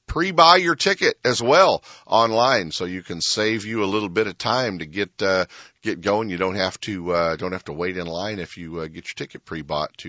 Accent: American